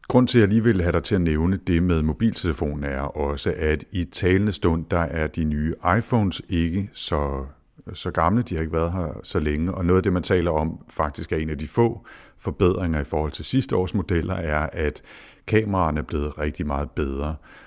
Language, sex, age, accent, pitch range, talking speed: Danish, male, 60-79, native, 75-95 Hz, 215 wpm